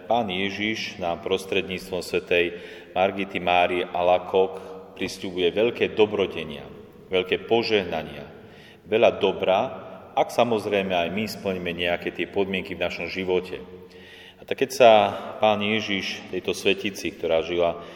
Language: Slovak